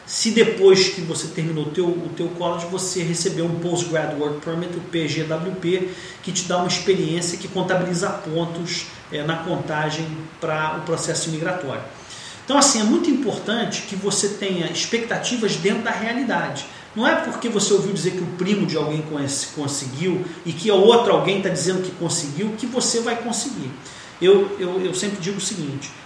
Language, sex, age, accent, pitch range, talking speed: Portuguese, male, 40-59, Brazilian, 165-210 Hz, 180 wpm